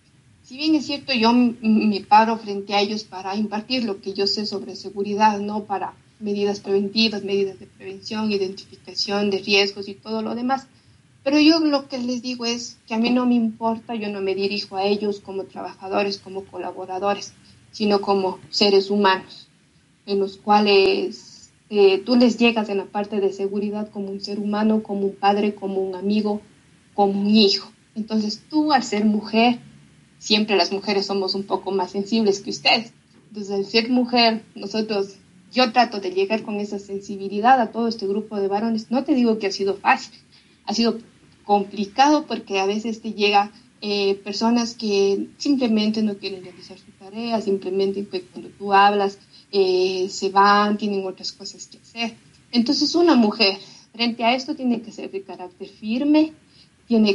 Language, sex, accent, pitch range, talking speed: Spanish, female, Mexican, 195-225 Hz, 175 wpm